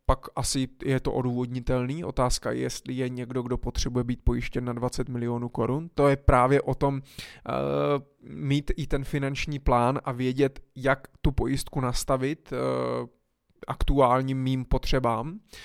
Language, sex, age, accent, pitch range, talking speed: Czech, male, 20-39, native, 130-155 Hz, 140 wpm